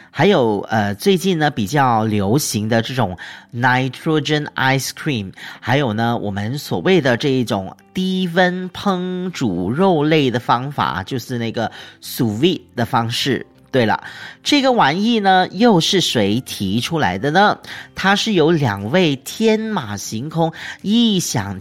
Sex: male